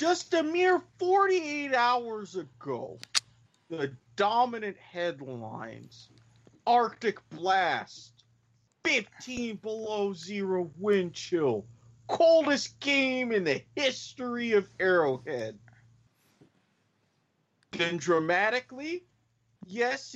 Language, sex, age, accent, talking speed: English, male, 40-59, American, 75 wpm